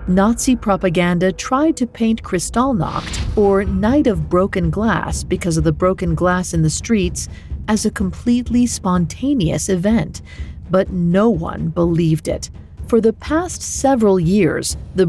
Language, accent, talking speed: English, American, 140 wpm